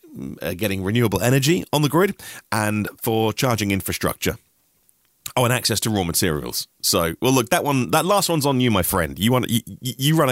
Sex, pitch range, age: male, 95-135 Hz, 30-49